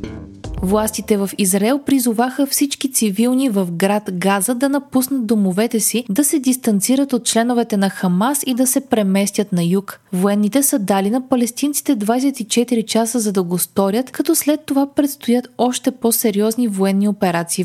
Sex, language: female, Bulgarian